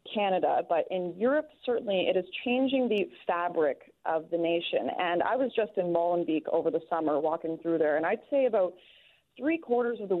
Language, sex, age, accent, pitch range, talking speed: English, female, 30-49, American, 170-215 Hz, 195 wpm